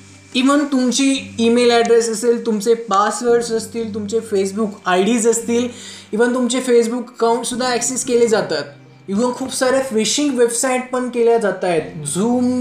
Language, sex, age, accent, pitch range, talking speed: Marathi, male, 20-39, native, 185-235 Hz, 150 wpm